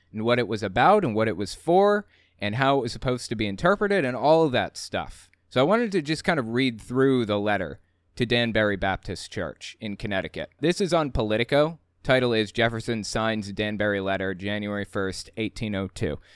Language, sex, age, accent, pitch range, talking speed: English, male, 20-39, American, 100-125 Hz, 195 wpm